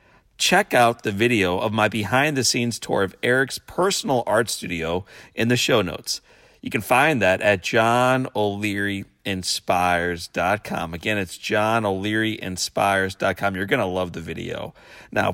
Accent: American